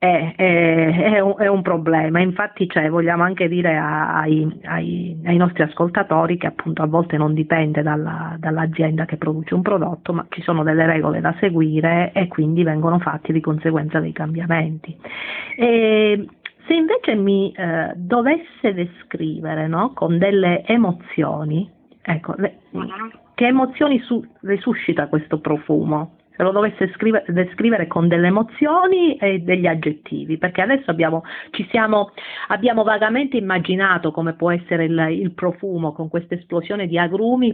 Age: 40-59